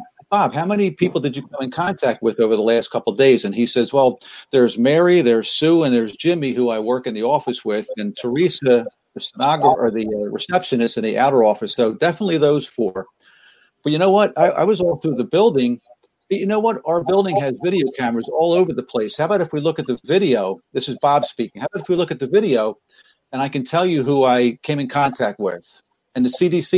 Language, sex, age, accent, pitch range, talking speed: English, male, 50-69, American, 125-175 Hz, 235 wpm